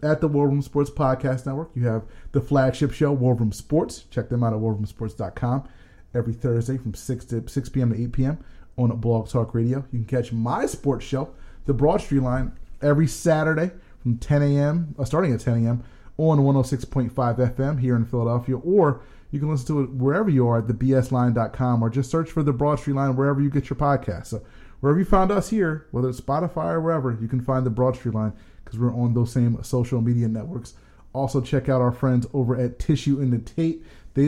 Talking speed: 210 wpm